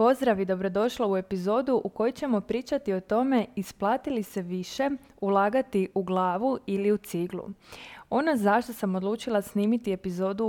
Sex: female